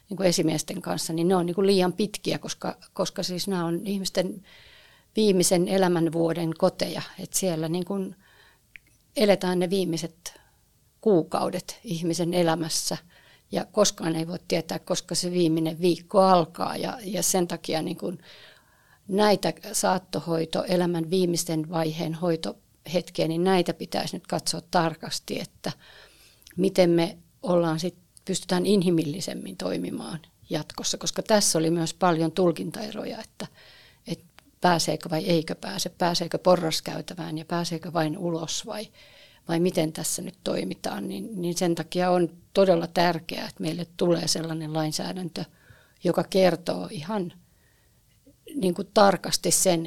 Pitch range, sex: 165-185 Hz, female